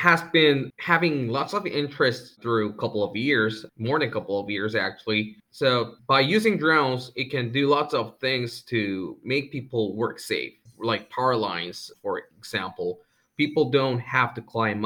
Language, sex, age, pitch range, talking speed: English, male, 20-39, 110-140 Hz, 175 wpm